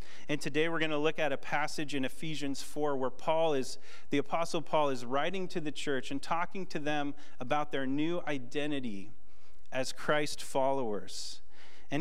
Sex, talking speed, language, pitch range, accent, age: male, 175 wpm, English, 120-155 Hz, American, 30-49